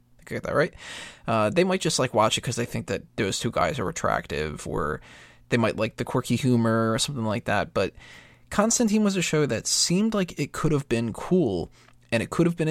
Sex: male